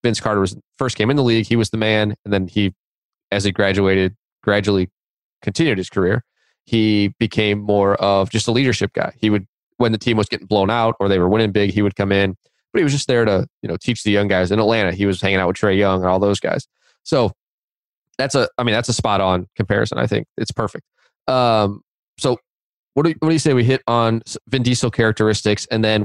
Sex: male